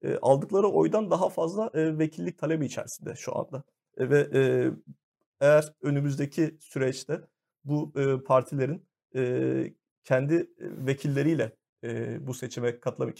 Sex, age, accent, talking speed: male, 40-59, native, 115 wpm